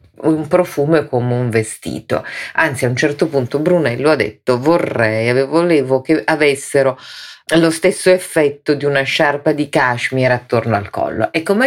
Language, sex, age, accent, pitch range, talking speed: Italian, female, 40-59, native, 125-165 Hz, 155 wpm